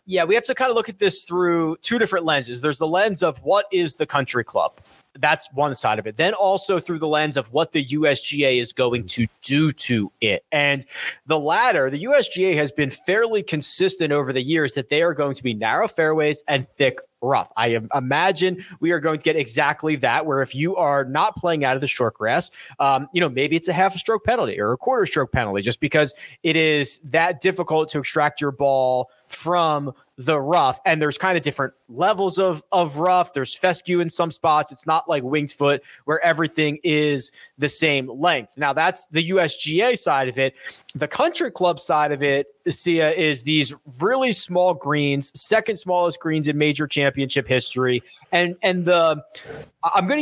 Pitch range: 140-175 Hz